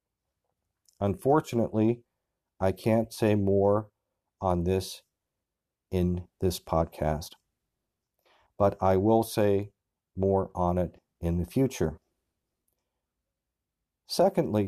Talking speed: 85 wpm